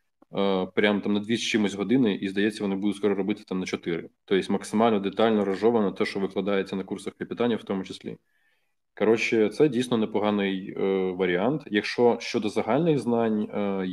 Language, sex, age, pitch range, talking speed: Russian, male, 20-39, 100-115 Hz, 170 wpm